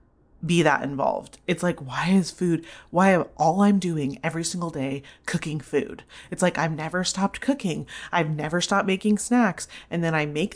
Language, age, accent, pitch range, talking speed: English, 30-49, American, 160-200 Hz, 190 wpm